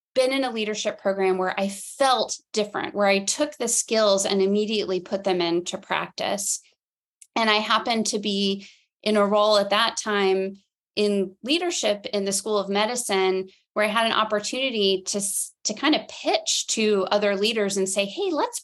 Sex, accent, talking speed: female, American, 175 wpm